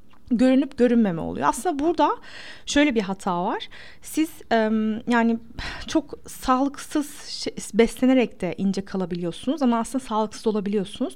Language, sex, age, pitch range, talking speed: Turkish, female, 30-49, 195-250 Hz, 115 wpm